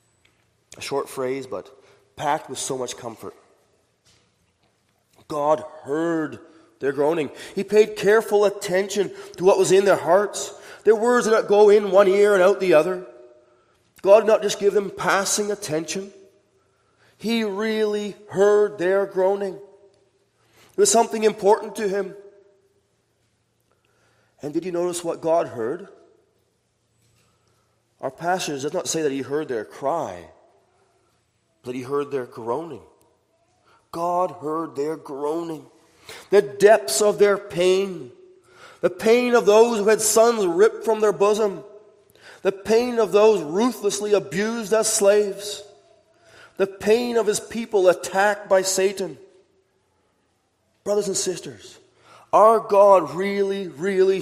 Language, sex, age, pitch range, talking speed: English, male, 30-49, 170-215 Hz, 130 wpm